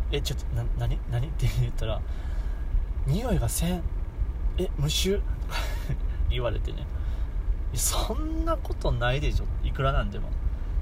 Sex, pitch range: male, 75-95 Hz